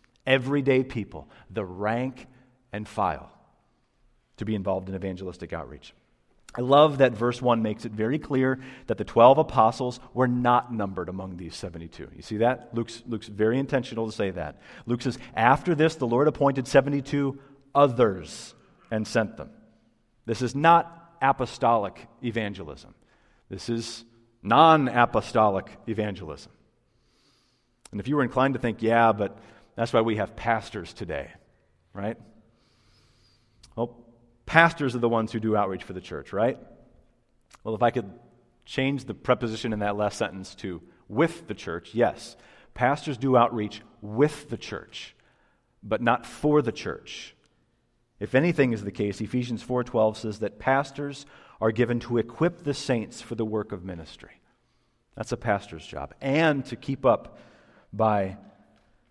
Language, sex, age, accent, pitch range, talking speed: English, male, 40-59, American, 105-130 Hz, 150 wpm